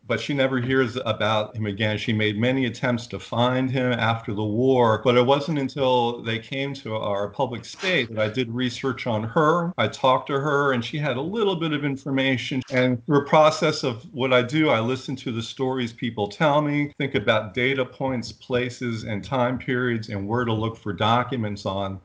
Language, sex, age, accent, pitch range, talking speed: English, male, 50-69, American, 110-140 Hz, 205 wpm